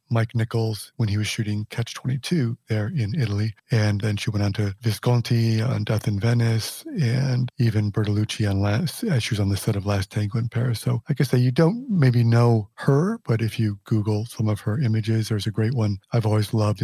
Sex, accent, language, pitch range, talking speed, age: male, American, English, 105-120 Hz, 220 wpm, 40-59